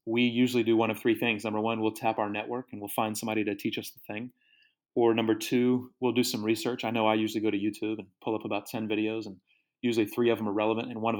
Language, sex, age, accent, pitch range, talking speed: English, male, 30-49, American, 110-125 Hz, 280 wpm